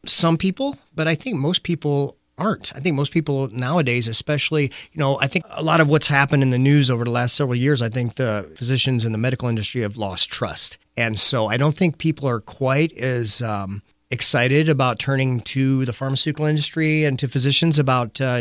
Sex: male